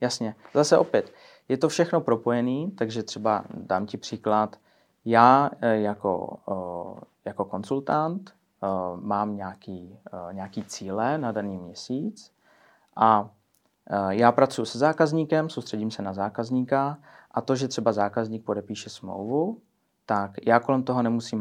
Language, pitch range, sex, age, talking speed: Czech, 105-130 Hz, male, 30-49, 125 wpm